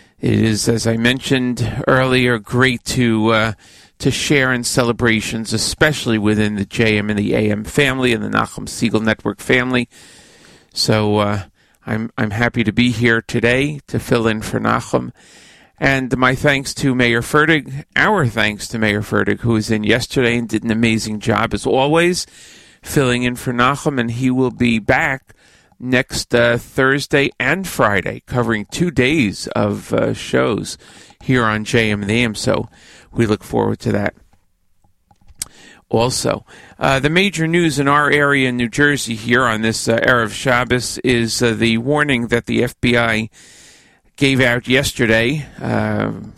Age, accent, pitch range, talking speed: 40-59, American, 110-135 Hz, 155 wpm